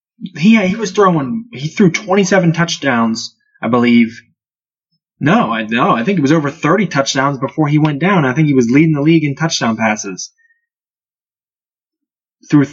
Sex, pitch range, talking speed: male, 130-170 Hz, 165 wpm